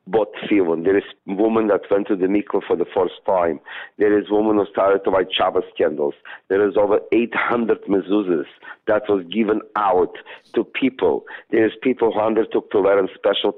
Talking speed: 200 wpm